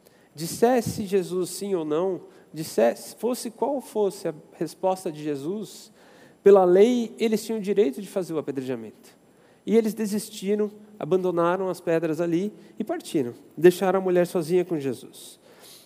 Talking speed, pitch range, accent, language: 145 wpm, 165-210 Hz, Brazilian, Portuguese